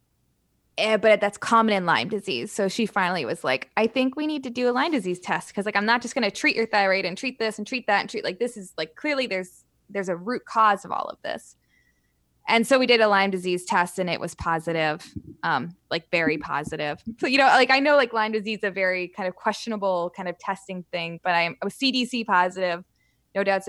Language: English